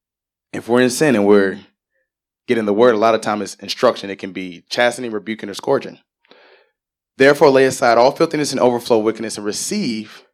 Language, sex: English, male